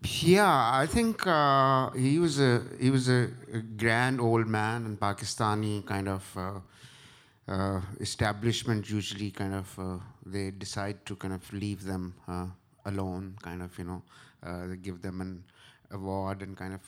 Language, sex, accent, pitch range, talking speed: English, male, Indian, 95-120 Hz, 165 wpm